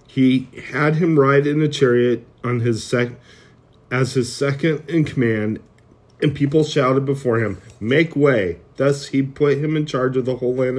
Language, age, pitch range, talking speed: English, 40-59, 120-145 Hz, 180 wpm